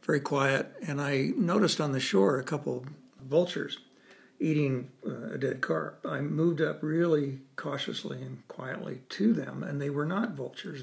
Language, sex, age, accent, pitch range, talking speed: English, male, 60-79, American, 130-160 Hz, 165 wpm